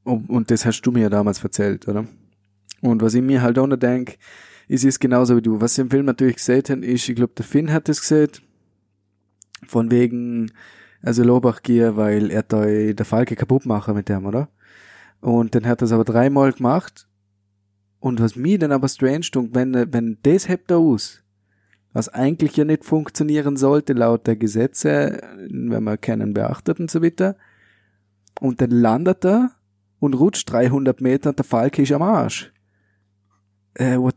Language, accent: German, German